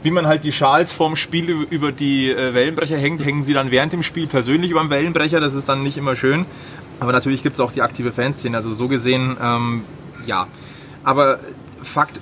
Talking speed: 205 wpm